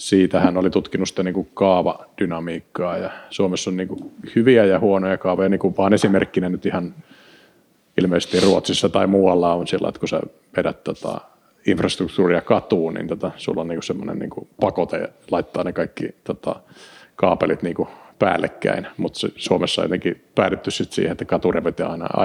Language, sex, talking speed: Finnish, male, 150 wpm